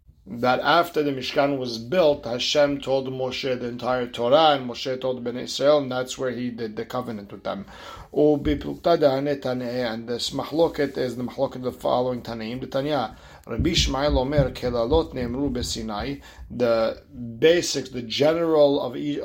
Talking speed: 130 wpm